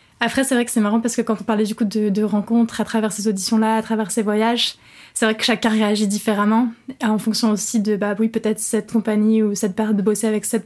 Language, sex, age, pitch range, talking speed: French, female, 20-39, 210-230 Hz, 260 wpm